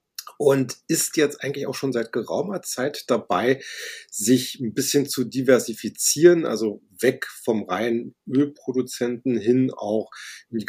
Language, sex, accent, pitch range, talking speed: German, male, German, 110-130 Hz, 130 wpm